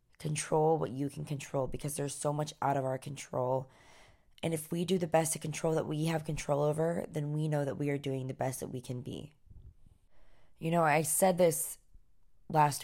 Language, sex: English, female